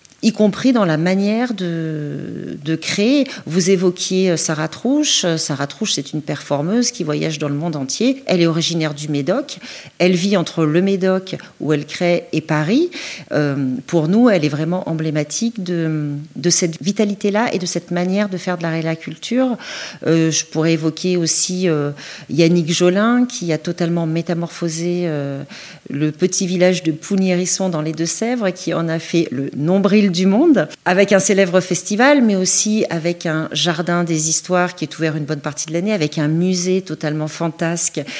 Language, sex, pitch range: French, female, 160-200 Hz